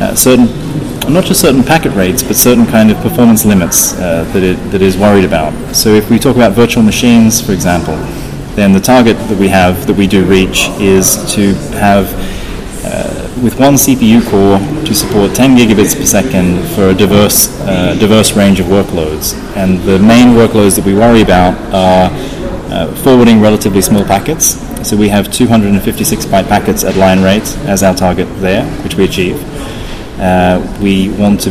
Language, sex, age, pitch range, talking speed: Russian, male, 20-39, 95-110 Hz, 185 wpm